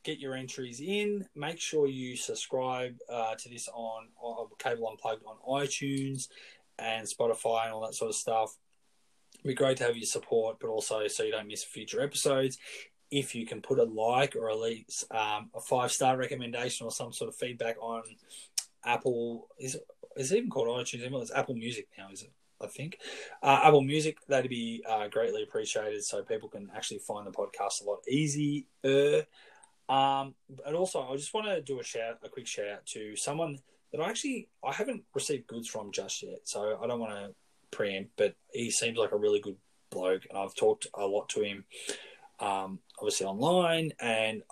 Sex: male